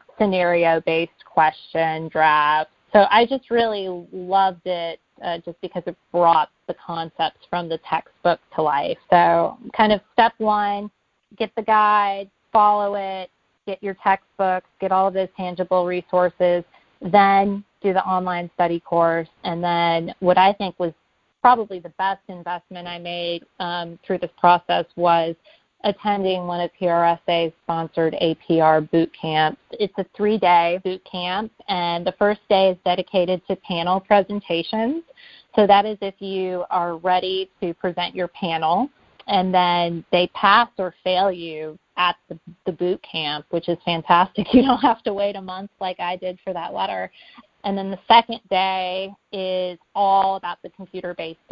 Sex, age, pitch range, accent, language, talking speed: female, 30-49, 170-195 Hz, American, English, 155 wpm